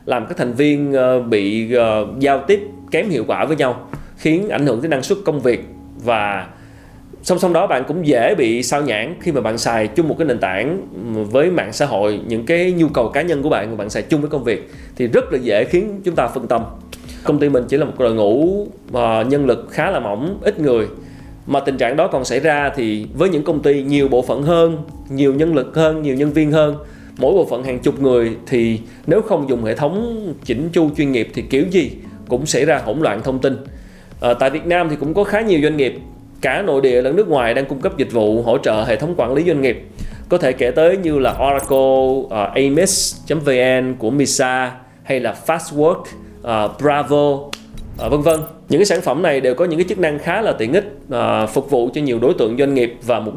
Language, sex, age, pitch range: Vietnamese, male, 20-39, 120-160 Hz